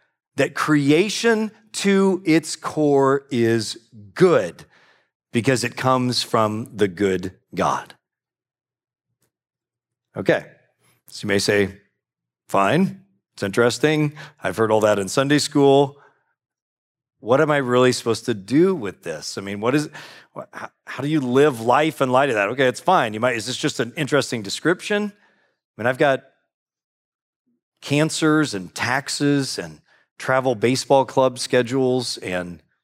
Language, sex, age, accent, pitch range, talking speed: English, male, 40-59, American, 110-145 Hz, 135 wpm